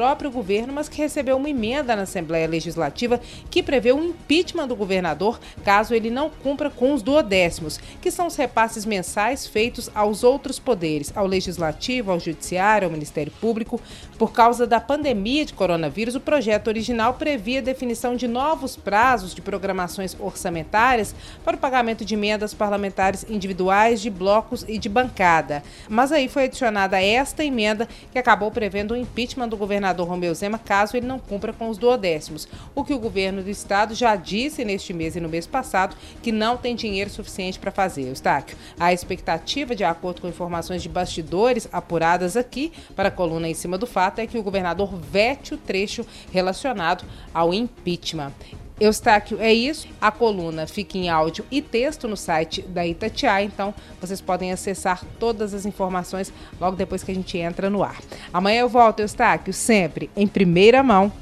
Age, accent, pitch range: 30-49, Brazilian, 180-245 Hz